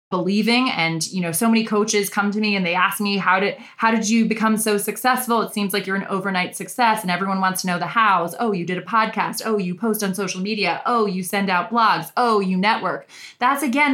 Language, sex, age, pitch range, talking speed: English, female, 20-39, 185-230 Hz, 245 wpm